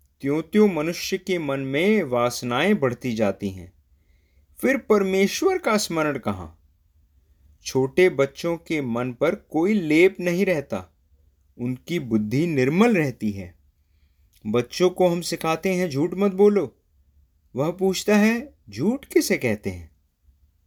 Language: English